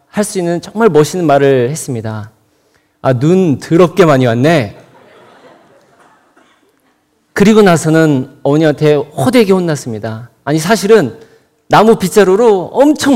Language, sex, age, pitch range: Korean, male, 40-59, 140-190 Hz